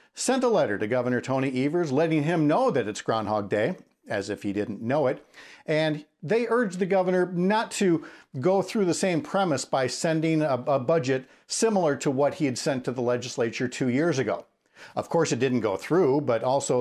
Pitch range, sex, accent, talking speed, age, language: 125-175 Hz, male, American, 205 wpm, 50-69, English